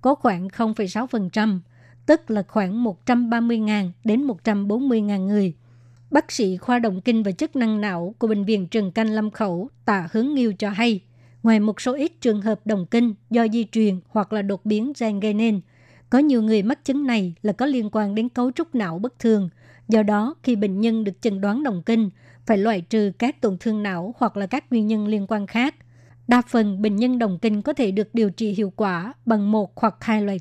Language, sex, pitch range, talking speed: Vietnamese, male, 200-235 Hz, 210 wpm